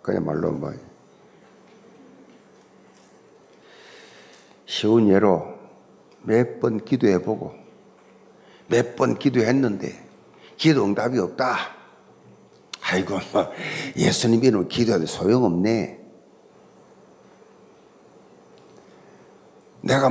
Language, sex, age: Korean, male, 50-69